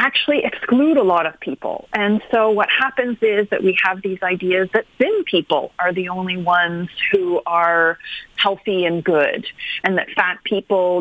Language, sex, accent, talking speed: English, female, American, 175 wpm